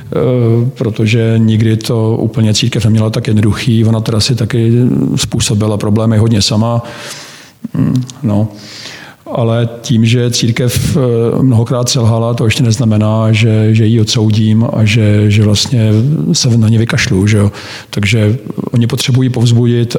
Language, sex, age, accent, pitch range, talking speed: Czech, male, 50-69, native, 110-125 Hz, 130 wpm